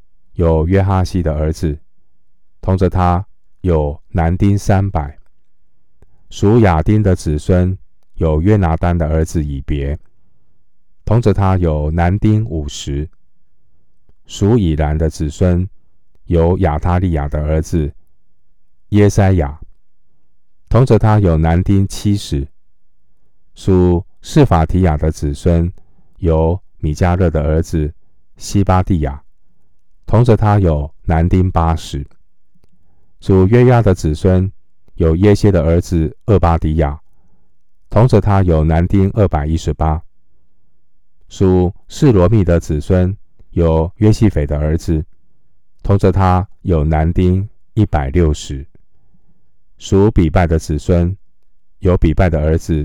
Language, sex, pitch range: Chinese, male, 80-95 Hz